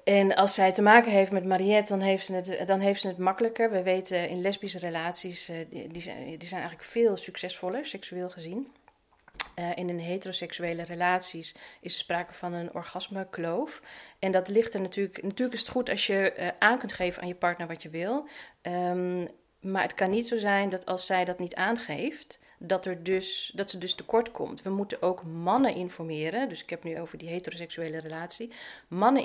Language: Dutch